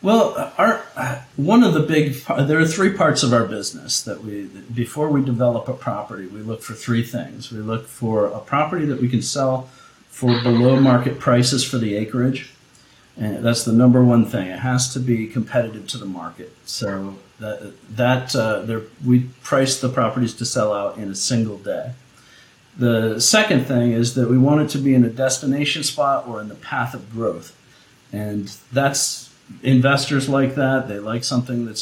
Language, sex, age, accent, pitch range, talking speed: English, male, 50-69, American, 115-130 Hz, 190 wpm